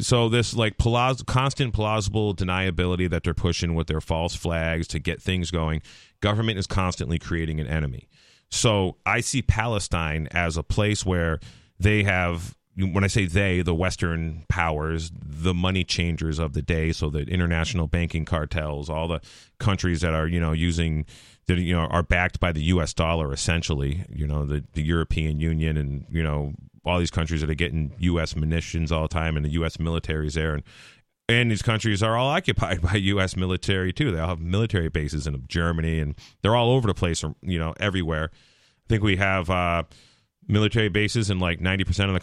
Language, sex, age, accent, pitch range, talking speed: English, male, 30-49, American, 80-100 Hz, 195 wpm